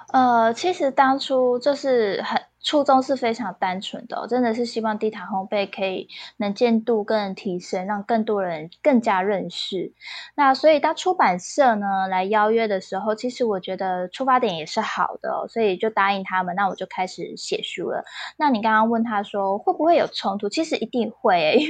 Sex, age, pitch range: female, 10-29, 190-265 Hz